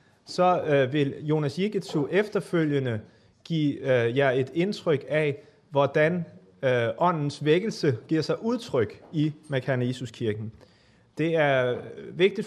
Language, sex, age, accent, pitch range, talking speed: Danish, male, 30-49, native, 130-170 Hz, 120 wpm